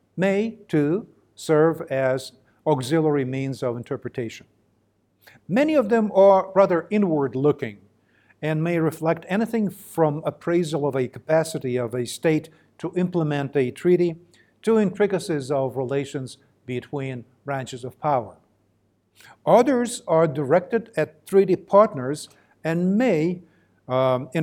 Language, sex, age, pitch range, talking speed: English, male, 50-69, 125-165 Hz, 120 wpm